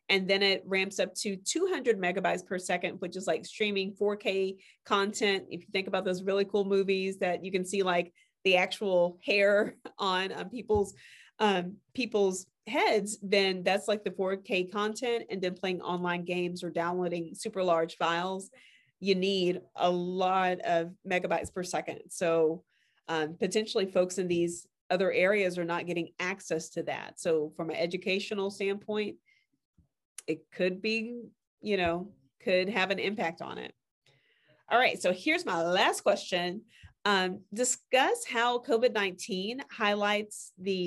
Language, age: English, 40-59